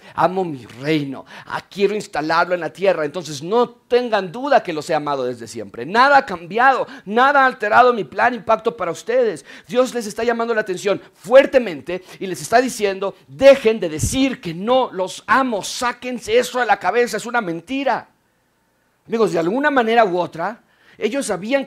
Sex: male